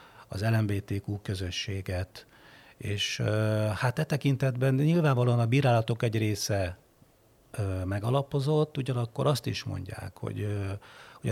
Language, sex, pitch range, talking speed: Hungarian, male, 100-120 Hz, 100 wpm